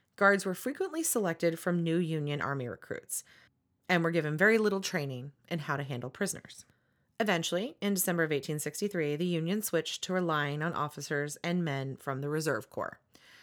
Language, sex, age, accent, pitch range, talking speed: English, female, 30-49, American, 145-195 Hz, 170 wpm